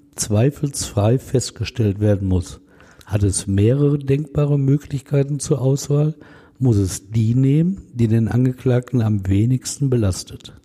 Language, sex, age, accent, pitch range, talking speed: German, male, 60-79, German, 105-135 Hz, 120 wpm